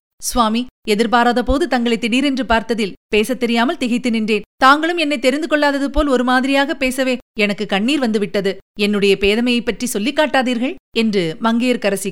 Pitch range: 200-250 Hz